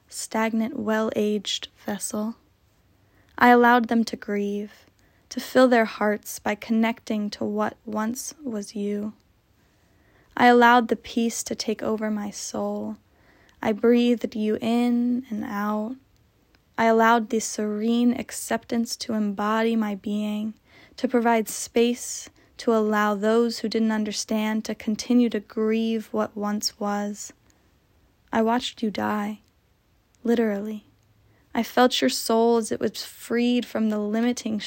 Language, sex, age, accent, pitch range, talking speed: English, female, 10-29, American, 210-235 Hz, 130 wpm